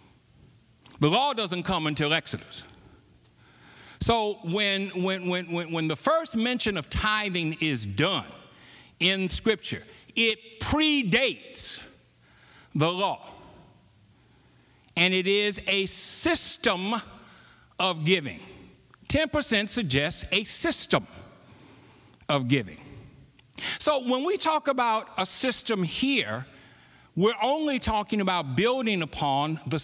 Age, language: 60-79, English